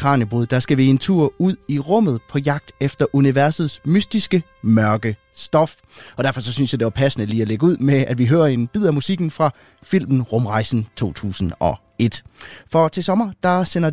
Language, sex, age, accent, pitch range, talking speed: Danish, male, 30-49, native, 110-155 Hz, 190 wpm